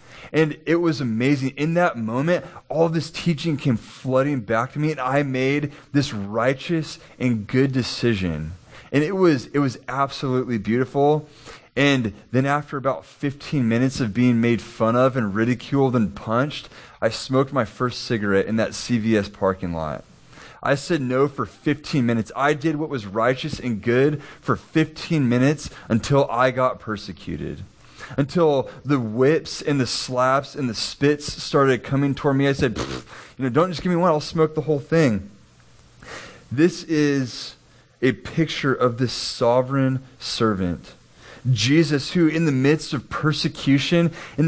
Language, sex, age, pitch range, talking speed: English, male, 20-39, 120-155 Hz, 160 wpm